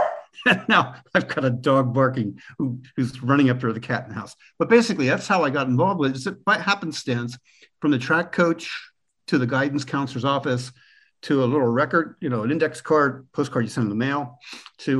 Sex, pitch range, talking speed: male, 125-170 Hz, 210 wpm